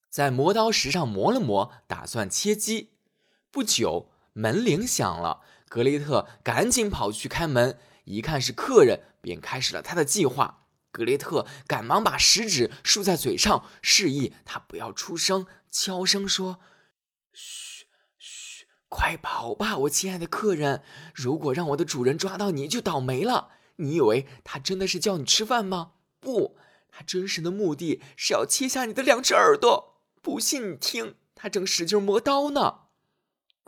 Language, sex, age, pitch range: Chinese, male, 20-39, 150-220 Hz